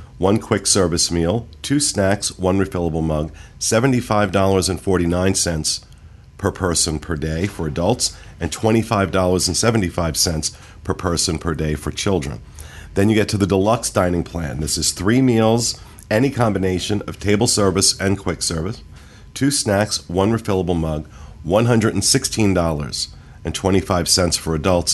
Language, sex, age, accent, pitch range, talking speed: English, male, 40-59, American, 80-105 Hz, 125 wpm